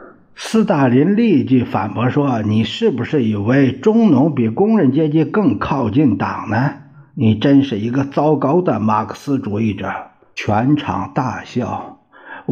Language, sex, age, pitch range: Chinese, male, 50-69, 105-155 Hz